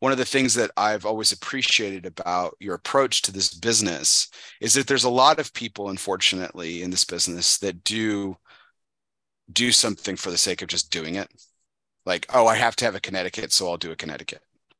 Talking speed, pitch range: 200 wpm, 90-115 Hz